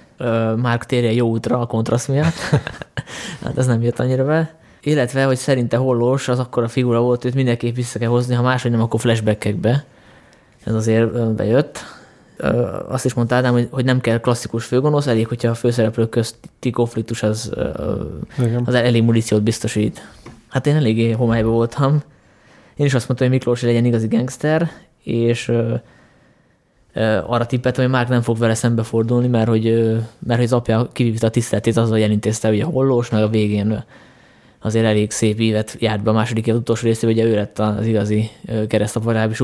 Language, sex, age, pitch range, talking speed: Hungarian, male, 20-39, 110-125 Hz, 175 wpm